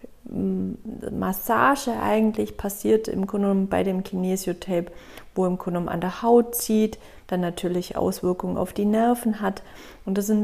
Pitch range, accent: 180-225 Hz, German